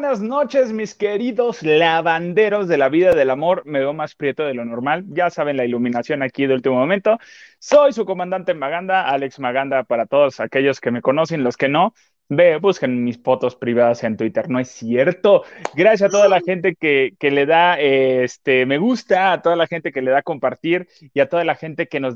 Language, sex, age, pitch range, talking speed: Spanish, male, 30-49, 135-195 Hz, 210 wpm